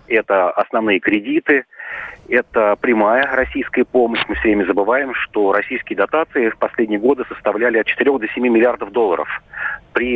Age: 30-49